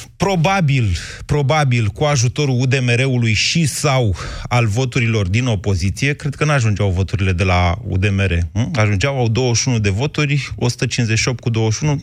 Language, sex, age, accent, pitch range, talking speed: Romanian, male, 30-49, native, 105-145 Hz, 135 wpm